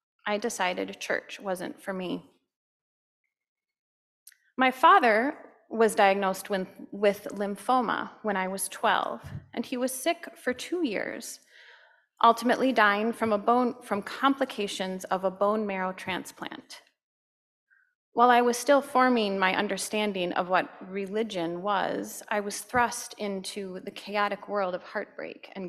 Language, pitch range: English, 190-255 Hz